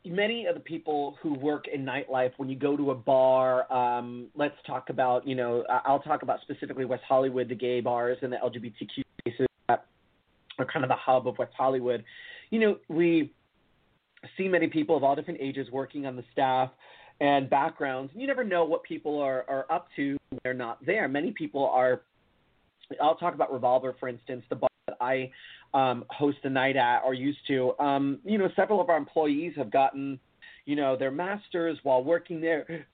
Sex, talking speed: male, 195 wpm